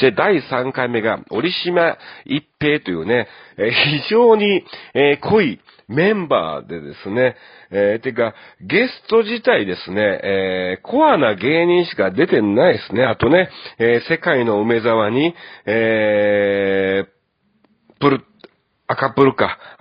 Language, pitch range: Japanese, 100-140 Hz